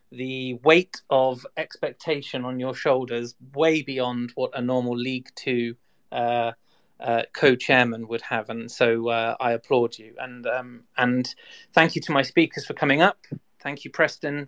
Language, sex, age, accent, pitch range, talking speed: English, male, 30-49, British, 125-155 Hz, 160 wpm